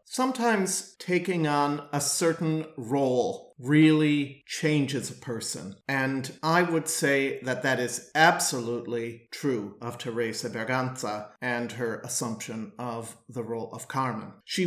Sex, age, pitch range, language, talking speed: male, 40-59, 130-165 Hz, English, 125 wpm